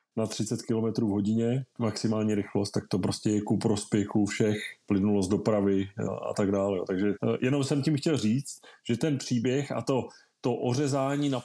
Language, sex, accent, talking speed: Czech, male, native, 180 wpm